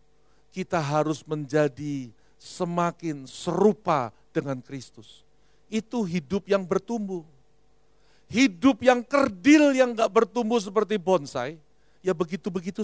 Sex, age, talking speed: male, 50-69, 100 wpm